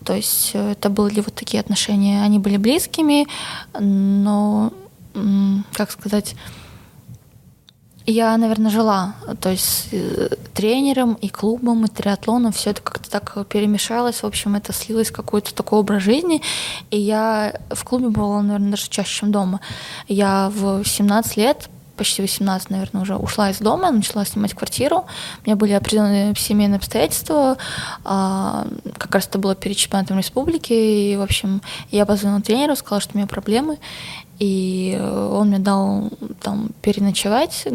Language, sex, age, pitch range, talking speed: Russian, female, 20-39, 200-220 Hz, 145 wpm